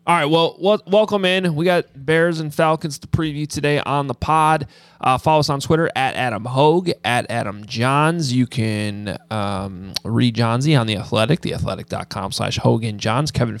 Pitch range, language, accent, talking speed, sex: 110-150 Hz, English, American, 180 wpm, male